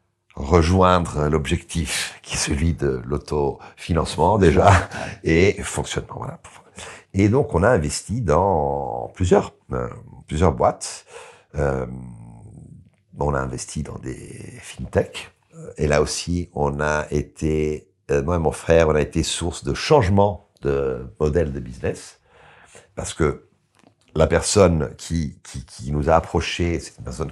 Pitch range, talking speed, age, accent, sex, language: 70-90 Hz, 135 wpm, 60-79, French, male, French